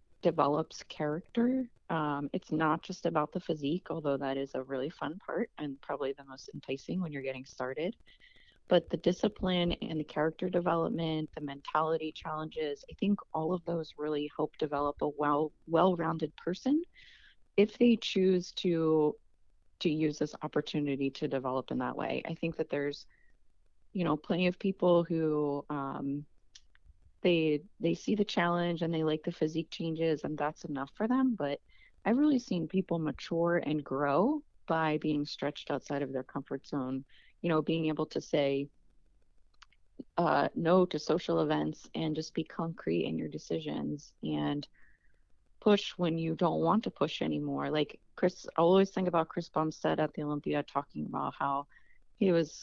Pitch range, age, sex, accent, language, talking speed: 145-175 Hz, 30-49, female, American, English, 170 wpm